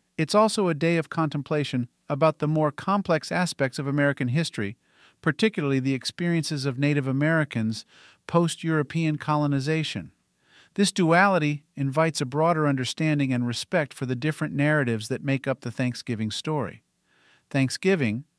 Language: English